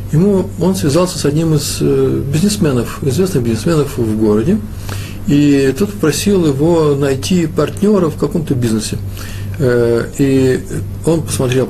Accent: native